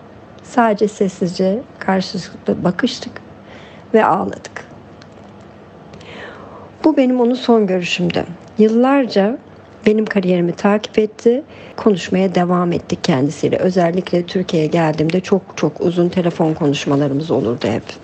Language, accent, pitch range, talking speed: Turkish, native, 175-225 Hz, 100 wpm